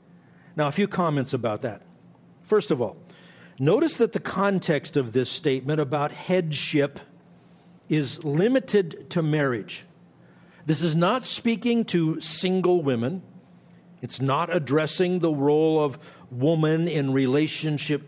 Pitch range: 135-175 Hz